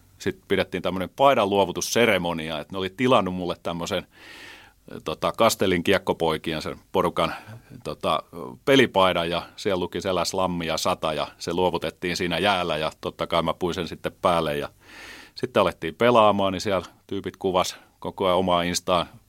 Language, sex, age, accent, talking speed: Finnish, male, 30-49, native, 150 wpm